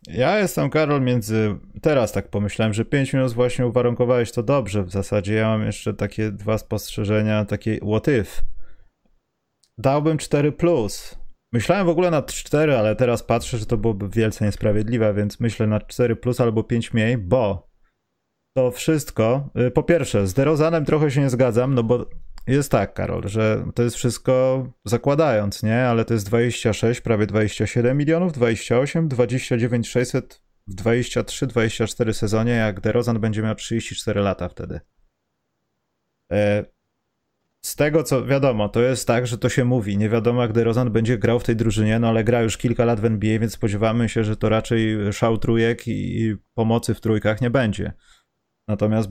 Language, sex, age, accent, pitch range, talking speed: Polish, male, 30-49, native, 110-125 Hz, 165 wpm